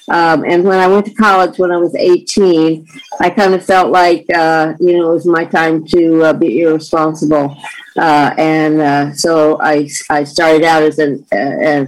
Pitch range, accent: 150-180 Hz, American